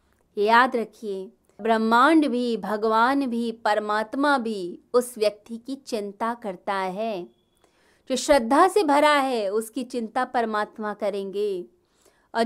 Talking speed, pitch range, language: 115 wpm, 195-245 Hz, Hindi